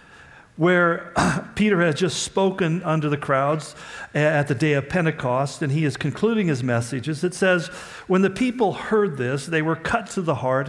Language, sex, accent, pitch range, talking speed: English, male, American, 135-185 Hz, 180 wpm